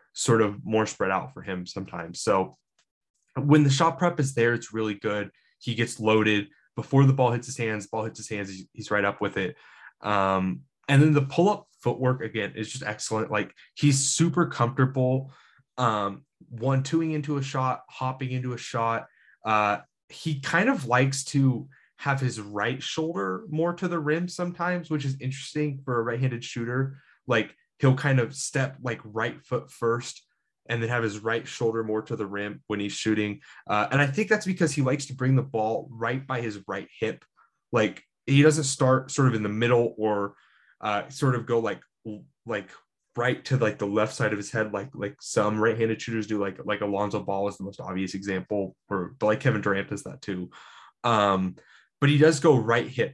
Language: English